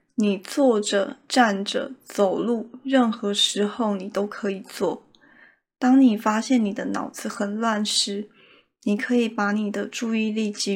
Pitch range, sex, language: 200-240 Hz, female, Chinese